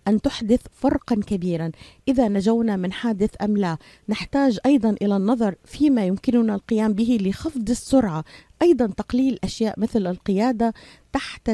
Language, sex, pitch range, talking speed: Arabic, female, 195-245 Hz, 135 wpm